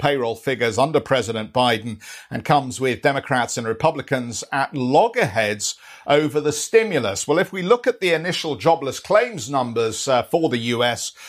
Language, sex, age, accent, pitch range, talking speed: English, male, 50-69, British, 125-155 Hz, 160 wpm